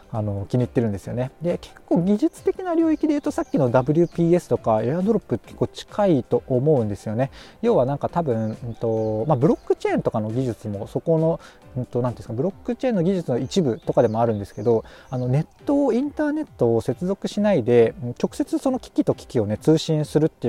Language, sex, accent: Japanese, male, native